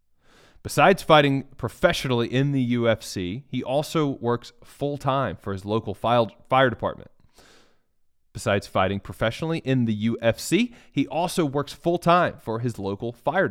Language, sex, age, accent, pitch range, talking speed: English, male, 30-49, American, 100-140 Hz, 130 wpm